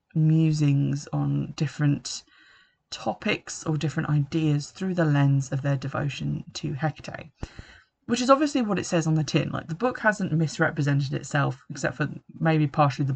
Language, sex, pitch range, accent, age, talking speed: English, female, 145-175 Hz, British, 20-39, 160 wpm